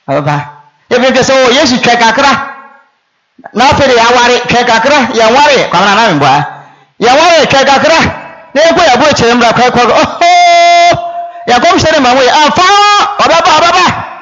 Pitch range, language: 180-275 Hz, English